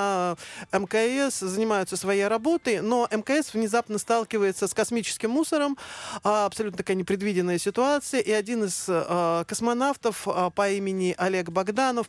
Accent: native